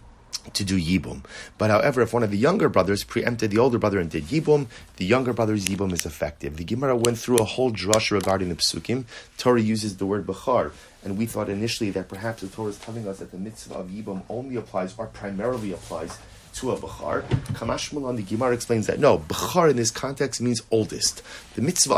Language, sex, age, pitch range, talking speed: English, male, 30-49, 100-125 Hz, 215 wpm